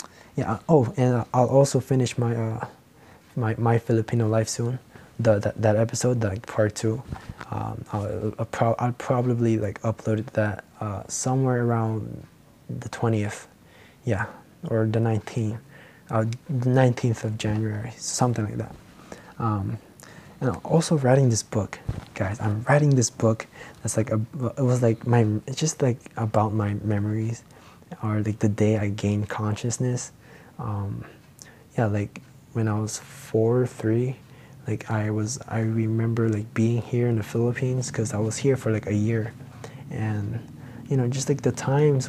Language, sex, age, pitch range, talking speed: English, male, 20-39, 110-125 Hz, 165 wpm